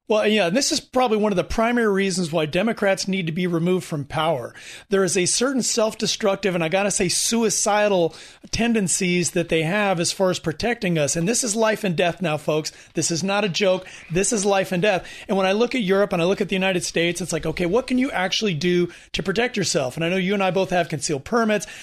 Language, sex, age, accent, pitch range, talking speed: English, male, 40-59, American, 175-210 Hz, 245 wpm